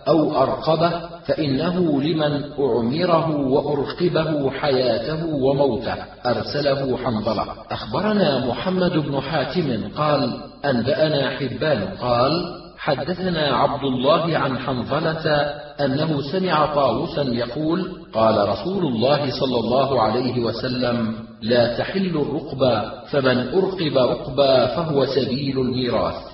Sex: male